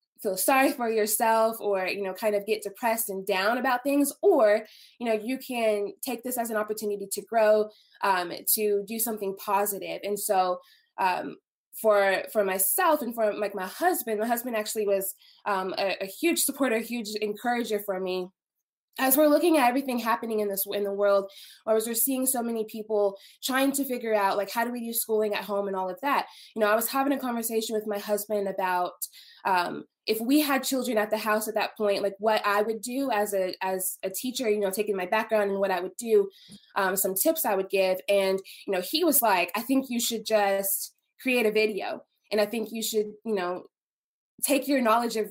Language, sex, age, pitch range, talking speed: English, female, 20-39, 200-245 Hz, 215 wpm